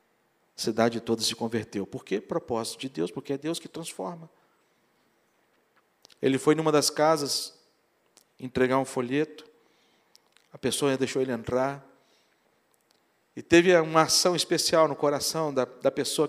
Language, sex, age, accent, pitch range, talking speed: Portuguese, male, 50-69, Brazilian, 130-165 Hz, 145 wpm